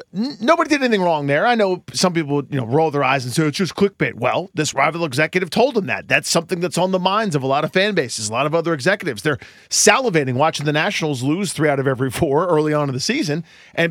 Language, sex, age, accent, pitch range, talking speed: English, male, 40-59, American, 140-195 Hz, 260 wpm